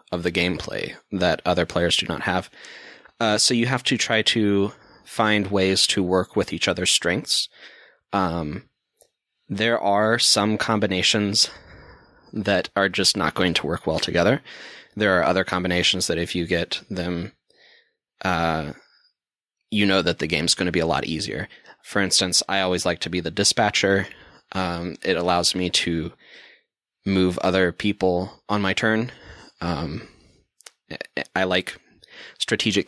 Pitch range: 90-110 Hz